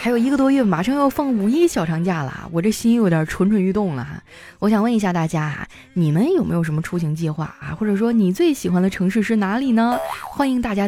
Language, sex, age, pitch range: Chinese, female, 20-39, 175-240 Hz